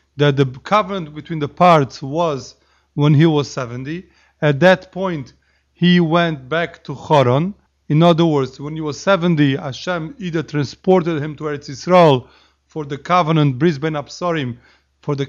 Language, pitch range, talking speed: English, 140-170 Hz, 155 wpm